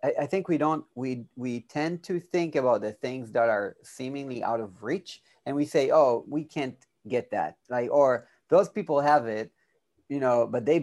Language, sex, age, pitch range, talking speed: English, male, 30-49, 115-150 Hz, 200 wpm